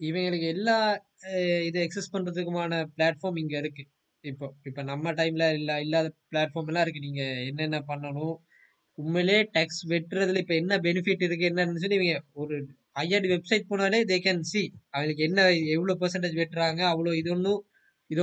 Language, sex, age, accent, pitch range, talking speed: Tamil, male, 20-39, native, 160-190 Hz, 150 wpm